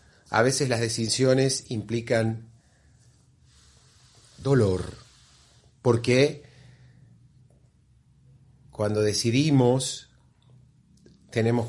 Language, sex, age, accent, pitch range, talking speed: Spanish, male, 30-49, Argentinian, 95-130 Hz, 50 wpm